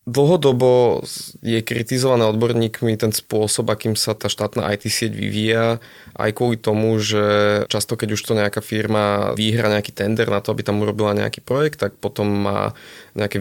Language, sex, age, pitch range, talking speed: Slovak, male, 20-39, 105-110 Hz, 165 wpm